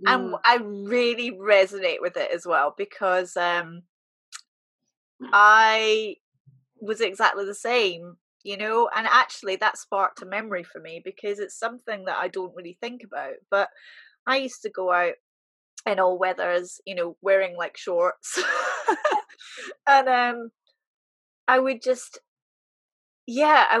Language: English